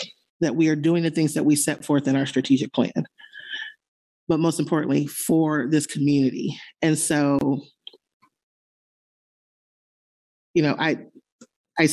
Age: 30-49